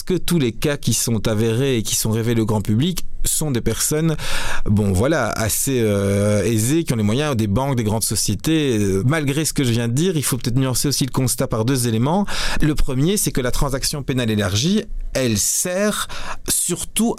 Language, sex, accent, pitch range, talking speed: French, male, French, 120-160 Hz, 205 wpm